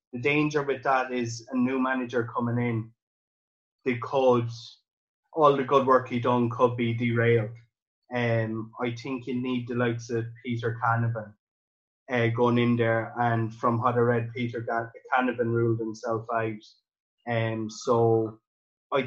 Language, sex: English, male